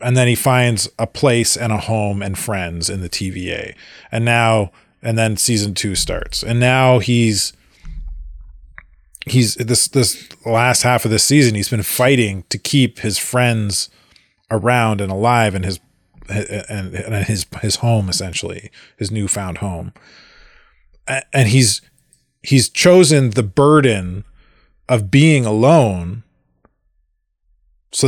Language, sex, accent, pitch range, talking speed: English, male, American, 95-130 Hz, 135 wpm